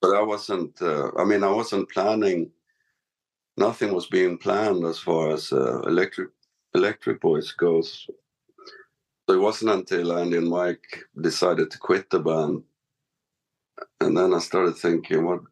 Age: 60-79